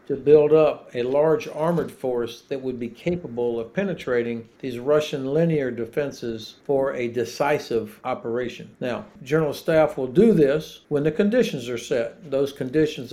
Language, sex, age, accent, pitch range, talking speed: English, male, 60-79, American, 130-155 Hz, 155 wpm